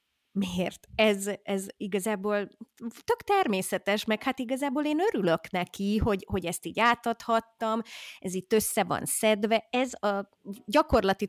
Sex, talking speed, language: female, 135 wpm, Hungarian